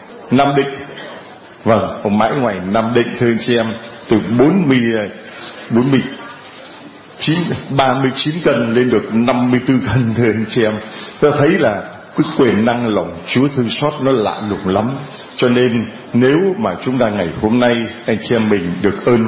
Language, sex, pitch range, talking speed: Vietnamese, male, 110-140 Hz, 165 wpm